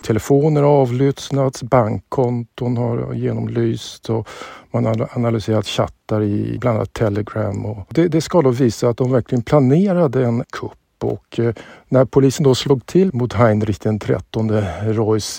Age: 50-69